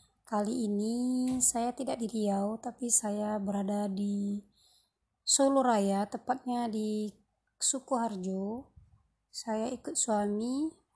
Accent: native